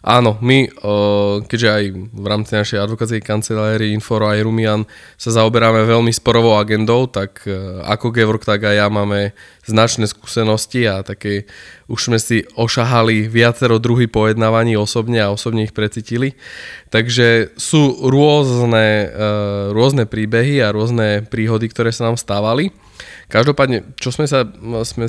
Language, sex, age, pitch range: Slovak, male, 20-39, 105-120 Hz